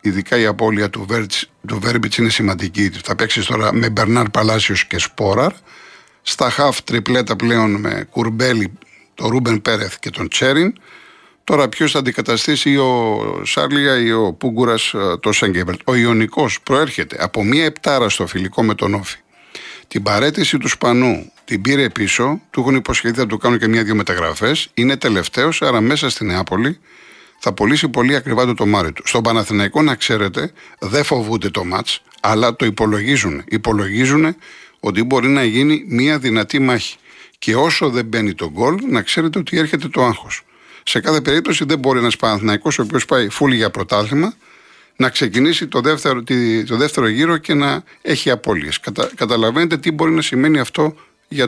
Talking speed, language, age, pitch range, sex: 165 wpm, Greek, 50-69, 110-140 Hz, male